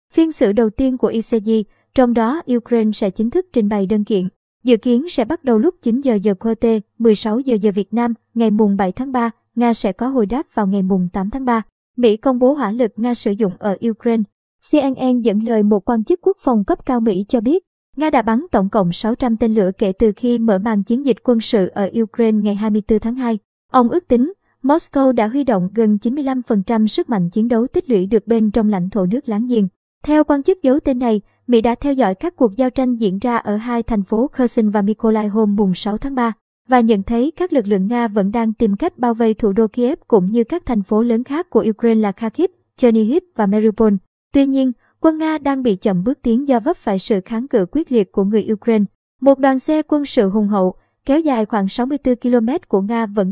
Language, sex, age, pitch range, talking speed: Vietnamese, male, 20-39, 215-255 Hz, 235 wpm